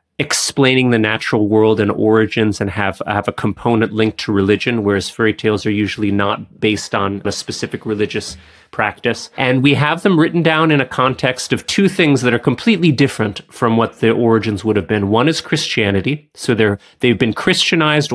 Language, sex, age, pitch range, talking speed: English, male, 30-49, 105-125 Hz, 190 wpm